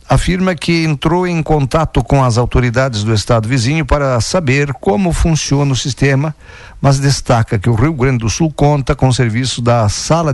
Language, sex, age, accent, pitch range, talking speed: Portuguese, male, 50-69, Brazilian, 115-140 Hz, 175 wpm